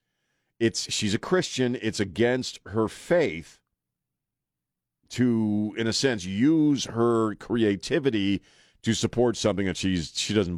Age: 40-59